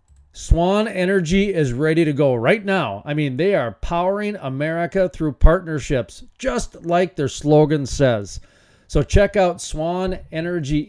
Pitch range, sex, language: 125-170 Hz, male, English